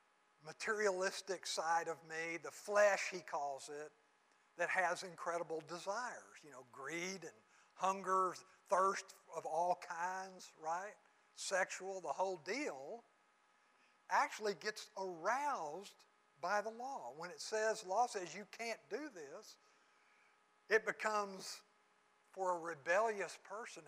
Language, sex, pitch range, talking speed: English, male, 180-245 Hz, 120 wpm